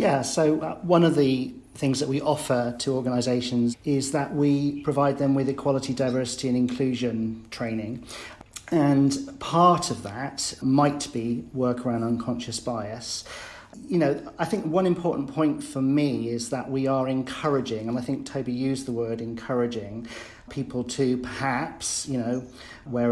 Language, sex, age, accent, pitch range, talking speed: English, male, 40-59, British, 120-135 Hz, 155 wpm